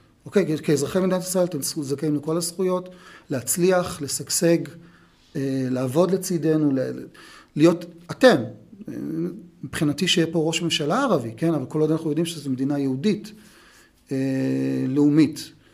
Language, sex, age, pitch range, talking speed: Hebrew, male, 40-59, 145-175 Hz, 120 wpm